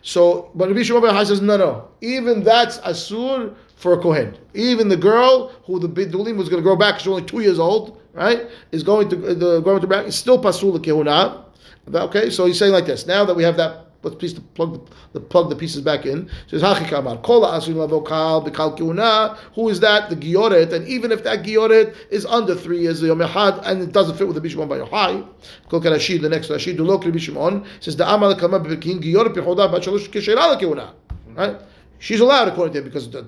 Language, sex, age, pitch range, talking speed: English, male, 30-49, 160-205 Hz, 180 wpm